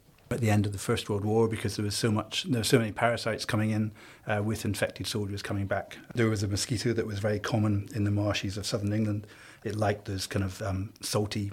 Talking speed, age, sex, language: 245 wpm, 40-59, male, English